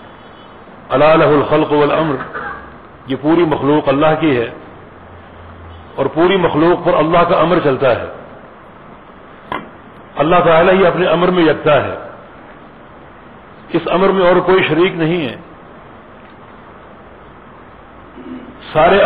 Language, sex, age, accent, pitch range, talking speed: English, male, 50-69, Indian, 140-170 Hz, 105 wpm